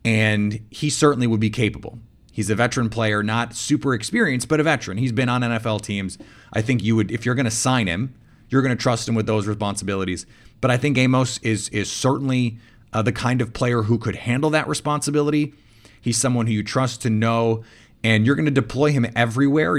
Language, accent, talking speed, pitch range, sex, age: English, American, 210 wpm, 105-125 Hz, male, 30-49